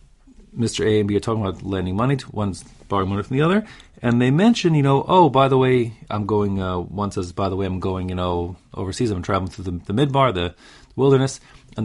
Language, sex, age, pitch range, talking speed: English, male, 30-49, 100-135 Hz, 245 wpm